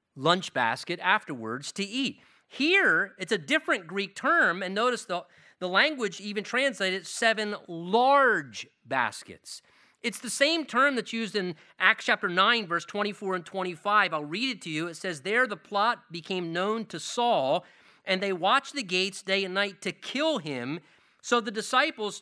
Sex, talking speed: male, 170 wpm